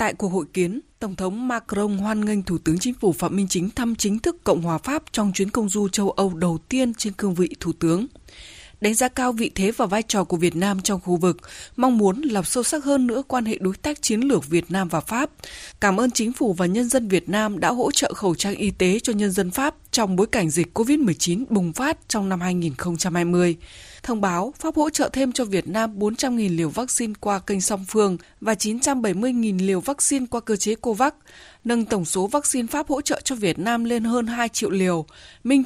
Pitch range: 190-255 Hz